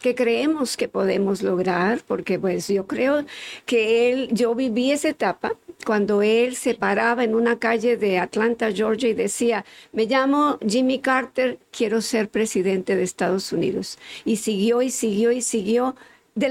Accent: American